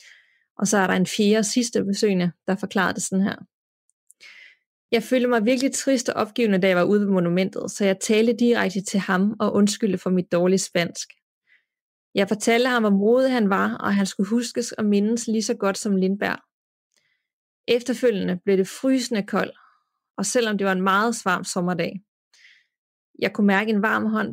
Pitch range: 190-230 Hz